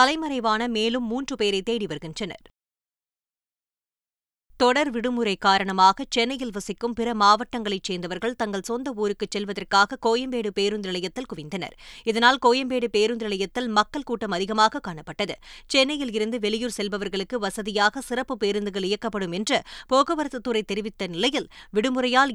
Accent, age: native, 20-39